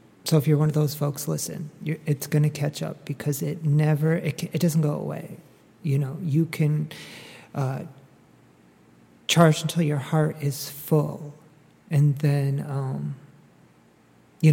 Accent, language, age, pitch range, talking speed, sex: American, English, 40-59, 145-160 Hz, 155 wpm, male